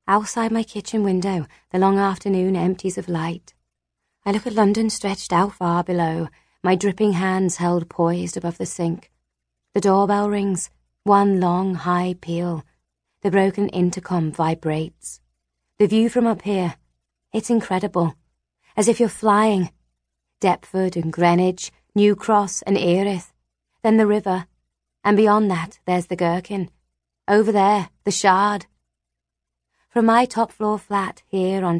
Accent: British